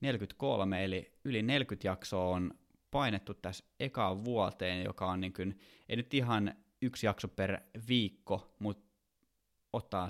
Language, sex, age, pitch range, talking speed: Finnish, male, 20-39, 95-110 Hz, 135 wpm